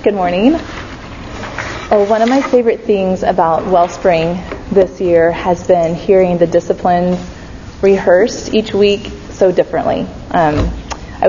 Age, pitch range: 20-39, 175-205 Hz